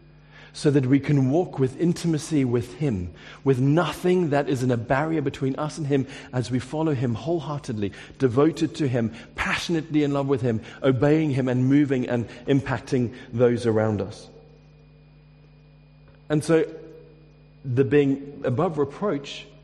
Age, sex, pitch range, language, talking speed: 50-69, male, 130-150 Hz, English, 145 wpm